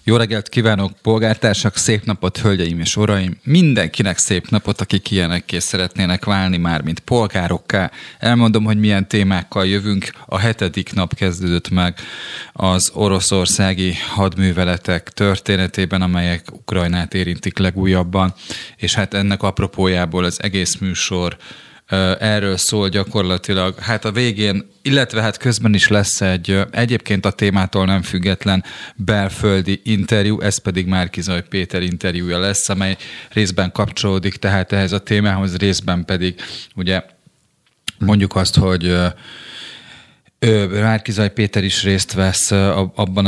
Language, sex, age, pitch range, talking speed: Hungarian, male, 30-49, 90-105 Hz, 120 wpm